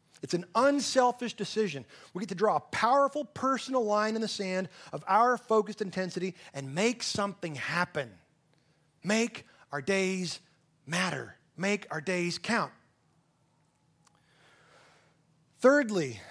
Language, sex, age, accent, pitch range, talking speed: English, male, 30-49, American, 165-230 Hz, 120 wpm